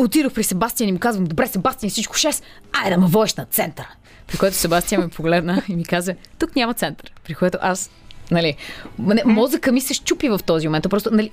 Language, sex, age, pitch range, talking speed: Bulgarian, female, 20-39, 175-235 Hz, 205 wpm